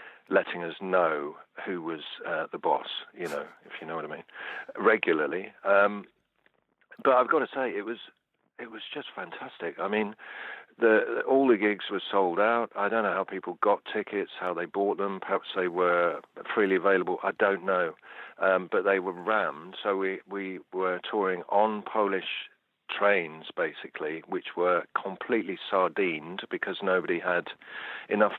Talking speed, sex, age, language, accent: 165 wpm, male, 50-69, English, British